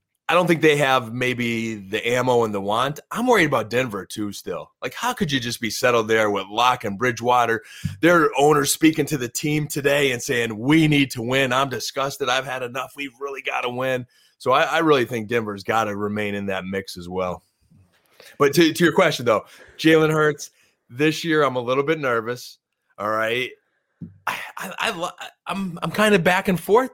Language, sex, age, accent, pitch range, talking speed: English, male, 30-49, American, 120-155 Hz, 210 wpm